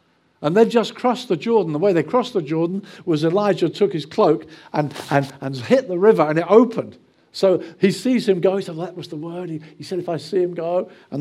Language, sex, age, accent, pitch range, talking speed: English, male, 50-69, British, 145-200 Hz, 250 wpm